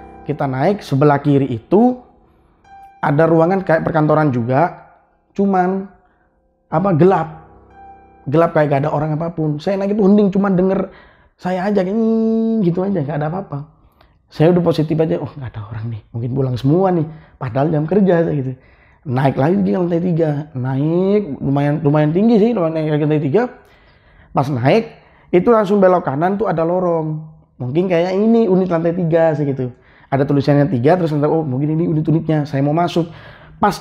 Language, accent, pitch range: Indonesian, native, 130-180 Hz